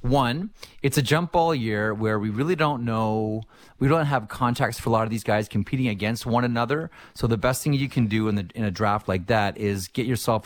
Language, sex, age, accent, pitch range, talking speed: English, male, 30-49, American, 100-120 Hz, 240 wpm